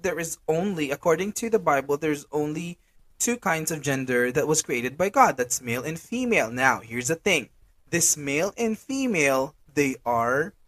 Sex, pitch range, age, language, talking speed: male, 135-175 Hz, 20-39, English, 180 wpm